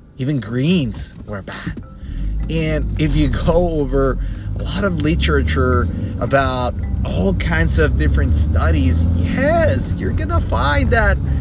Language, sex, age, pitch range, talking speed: English, male, 30-49, 85-95 Hz, 125 wpm